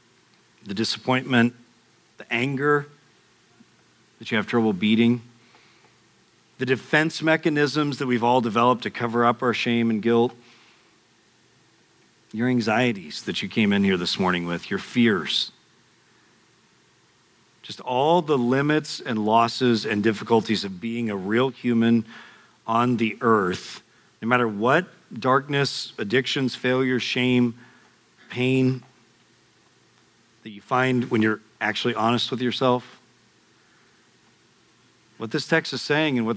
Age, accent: 40-59, American